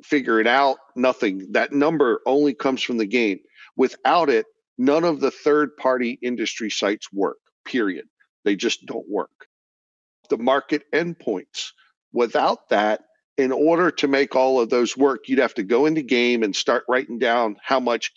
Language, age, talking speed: English, 50-69, 170 wpm